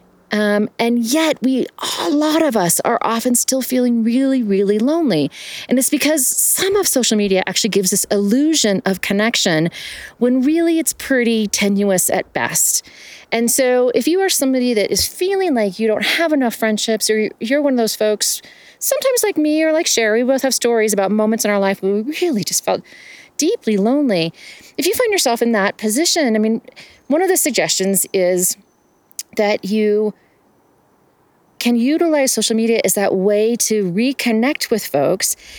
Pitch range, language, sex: 210-285 Hz, English, female